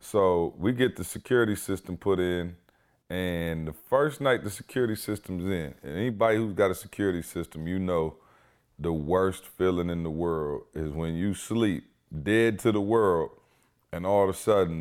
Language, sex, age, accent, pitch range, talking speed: English, male, 30-49, American, 85-105 Hz, 180 wpm